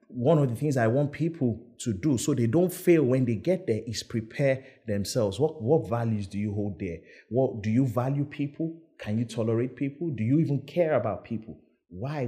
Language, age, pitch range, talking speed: English, 30-49, 110-145 Hz, 210 wpm